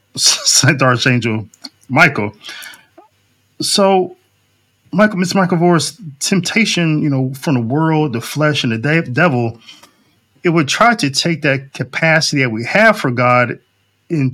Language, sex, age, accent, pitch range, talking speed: English, male, 20-39, American, 120-160 Hz, 140 wpm